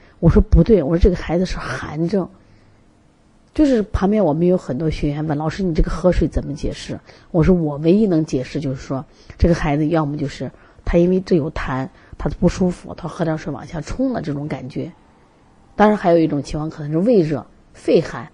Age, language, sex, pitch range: 30-49, Chinese, female, 145-180 Hz